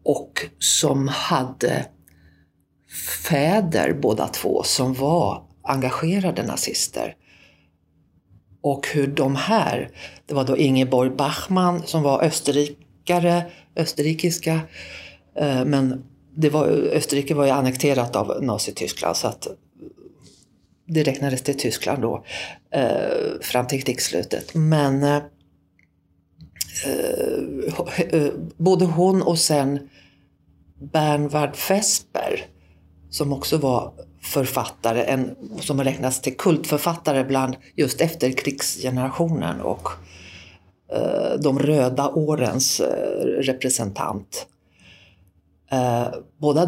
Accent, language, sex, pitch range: native, Swedish, female, 125-155 Hz